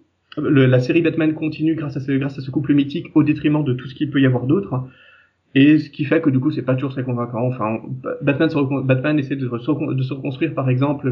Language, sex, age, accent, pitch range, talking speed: French, male, 30-49, French, 130-155 Hz, 250 wpm